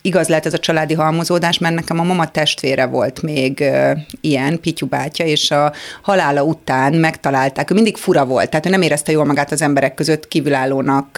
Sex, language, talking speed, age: female, Hungarian, 195 wpm, 30-49